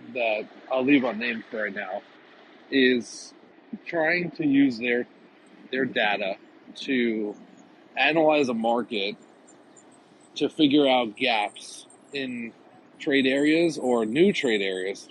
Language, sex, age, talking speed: English, male, 40-59, 115 wpm